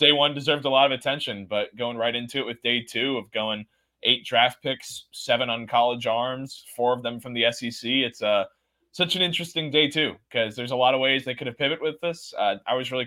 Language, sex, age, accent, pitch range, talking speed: English, male, 20-39, American, 110-135 Hz, 250 wpm